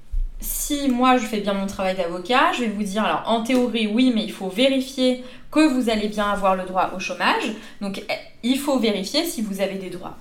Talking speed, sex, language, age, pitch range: 225 wpm, female, French, 20-39, 195-250 Hz